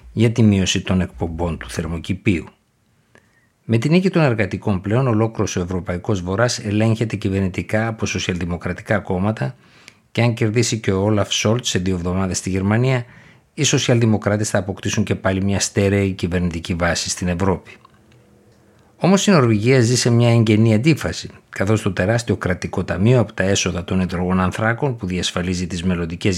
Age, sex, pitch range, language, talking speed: 50-69, male, 90-115 Hz, Greek, 155 wpm